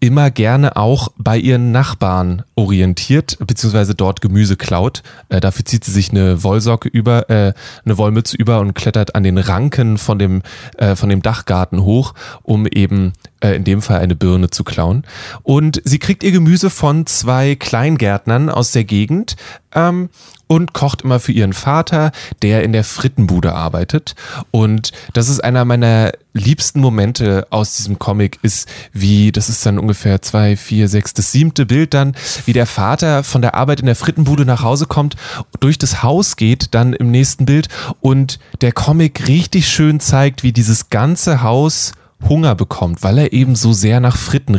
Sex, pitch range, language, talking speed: male, 105-140 Hz, German, 175 wpm